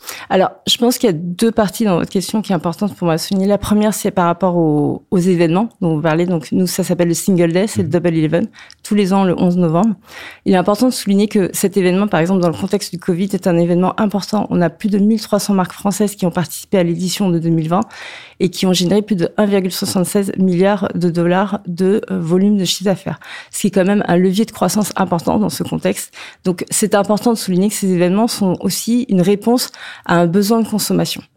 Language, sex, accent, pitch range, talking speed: French, female, French, 175-210 Hz, 235 wpm